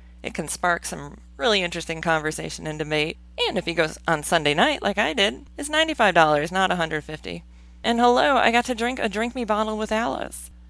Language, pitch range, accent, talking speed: English, 150-210 Hz, American, 195 wpm